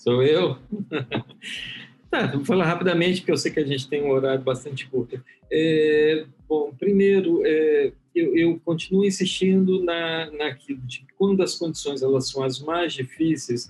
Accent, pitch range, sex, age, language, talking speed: Brazilian, 135-180 Hz, male, 50-69, Portuguese, 160 wpm